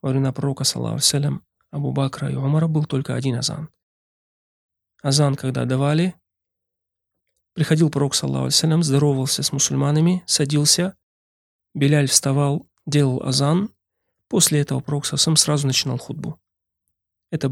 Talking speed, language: 120 wpm, Russian